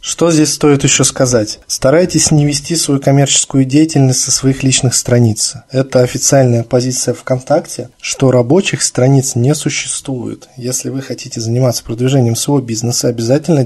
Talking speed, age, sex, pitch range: 140 wpm, 20-39, male, 120-140 Hz